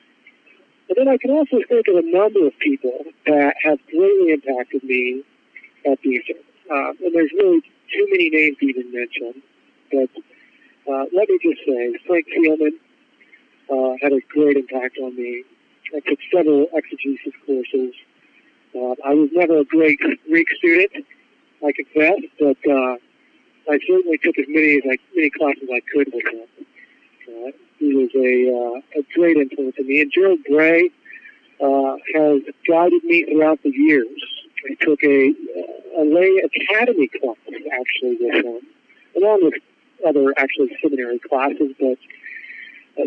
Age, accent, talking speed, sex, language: 50-69, American, 155 wpm, male, English